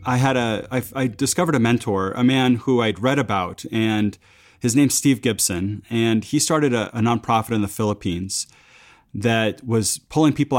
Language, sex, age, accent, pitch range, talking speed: English, male, 30-49, American, 105-130 Hz, 180 wpm